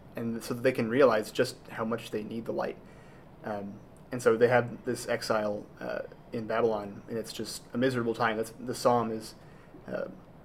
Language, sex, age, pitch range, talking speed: English, male, 30-49, 110-125 Hz, 200 wpm